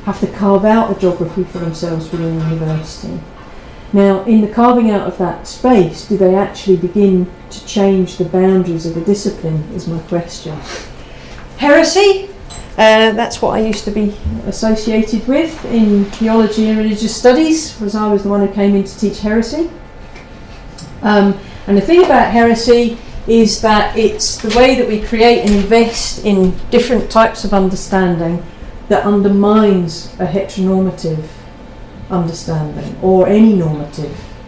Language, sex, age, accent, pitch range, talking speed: English, female, 40-59, British, 185-235 Hz, 155 wpm